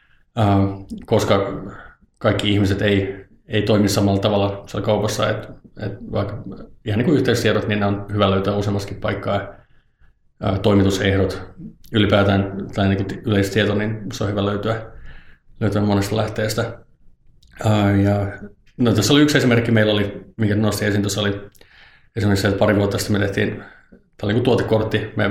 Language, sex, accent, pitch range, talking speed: Finnish, male, native, 100-115 Hz, 140 wpm